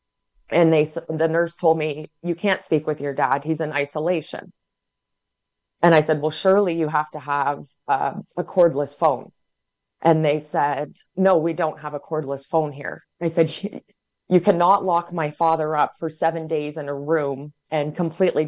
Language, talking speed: English, 180 wpm